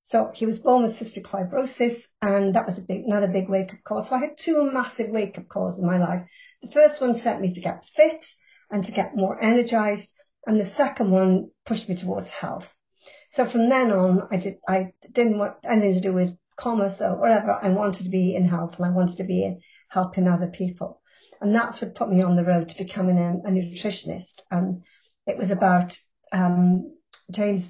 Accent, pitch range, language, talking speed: British, 190-230 Hz, English, 215 wpm